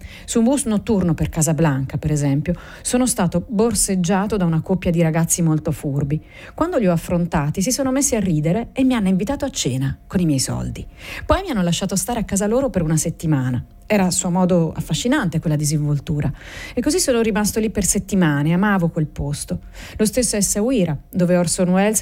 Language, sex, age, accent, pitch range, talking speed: Italian, female, 40-59, native, 165-220 Hz, 195 wpm